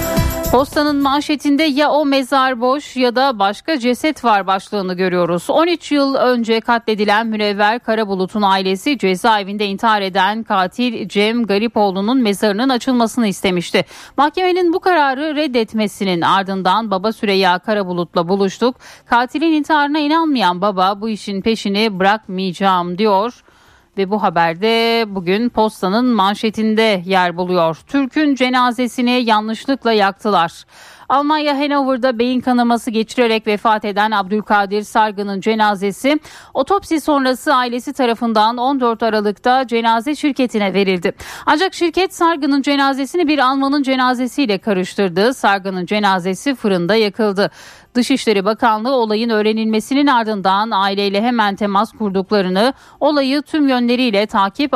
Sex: female